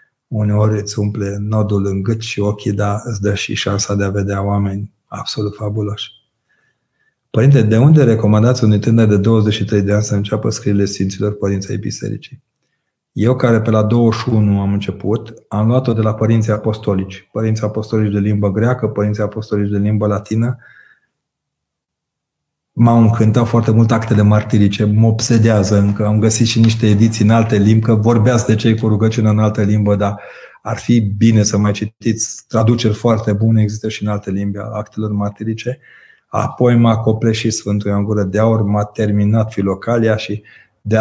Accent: native